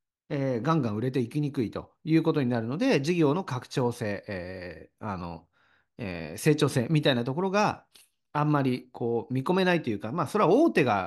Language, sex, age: Japanese, male, 40-59